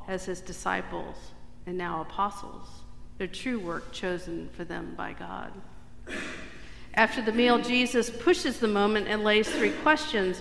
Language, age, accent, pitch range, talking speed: English, 50-69, American, 180-225 Hz, 145 wpm